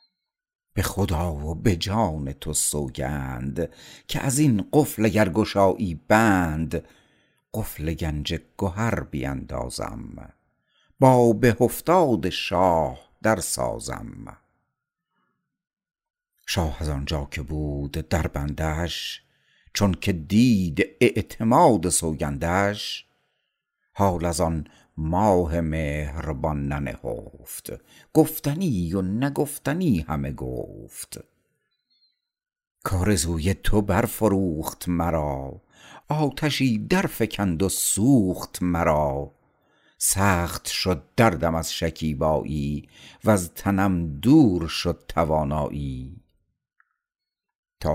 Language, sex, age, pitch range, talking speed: Persian, male, 60-79, 75-110 Hz, 85 wpm